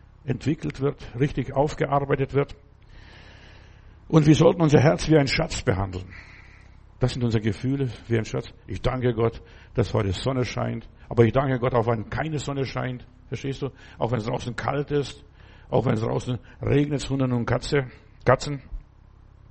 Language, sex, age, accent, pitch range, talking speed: German, male, 60-79, German, 110-140 Hz, 165 wpm